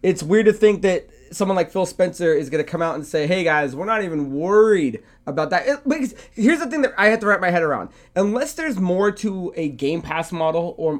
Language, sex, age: English, male, 20-39